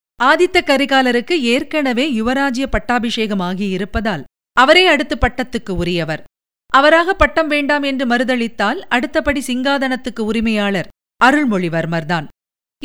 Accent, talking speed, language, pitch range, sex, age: native, 85 wpm, Tamil, 220-300 Hz, female, 50-69